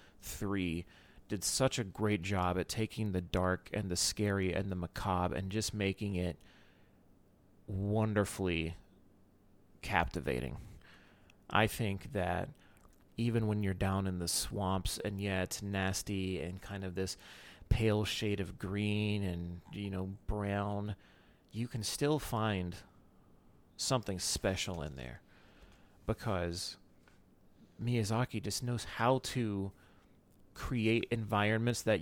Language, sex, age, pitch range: English, male, 30-49, 90-105 Hz